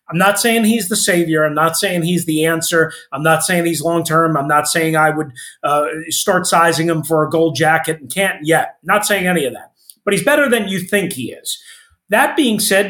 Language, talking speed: English, 230 wpm